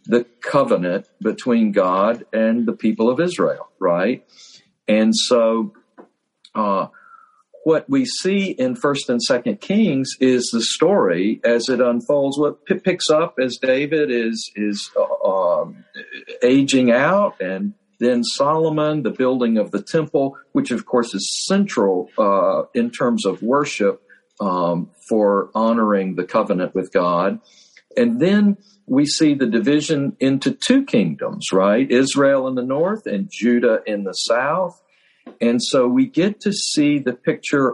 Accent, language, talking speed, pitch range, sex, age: American, English, 145 wpm, 120-170 Hz, male, 50-69